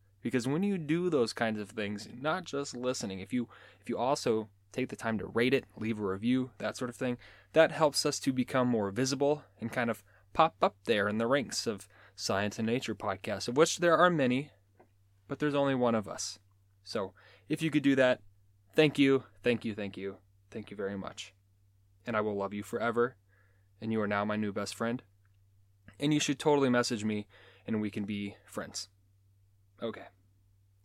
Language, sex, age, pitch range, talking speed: English, male, 20-39, 100-125 Hz, 200 wpm